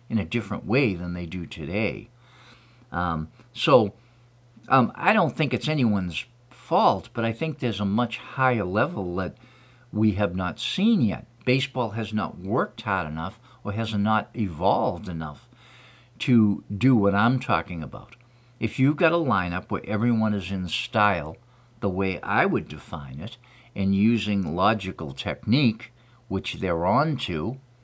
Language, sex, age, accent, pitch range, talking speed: English, male, 50-69, American, 95-120 Hz, 155 wpm